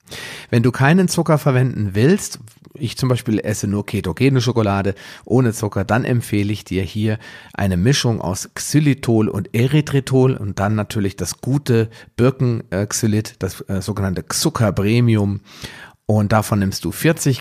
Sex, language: male, German